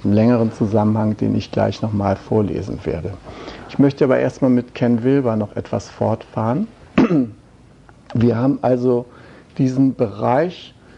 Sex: male